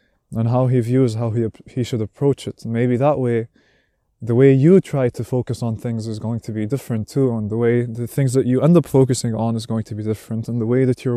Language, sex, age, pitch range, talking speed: English, male, 20-39, 110-130 Hz, 260 wpm